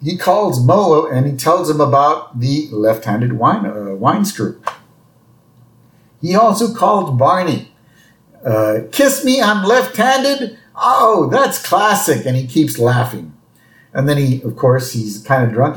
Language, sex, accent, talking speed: English, male, American, 150 wpm